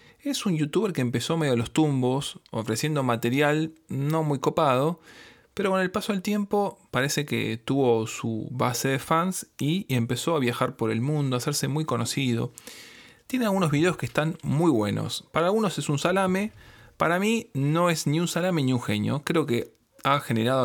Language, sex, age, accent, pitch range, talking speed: Spanish, male, 20-39, Argentinian, 120-170 Hz, 185 wpm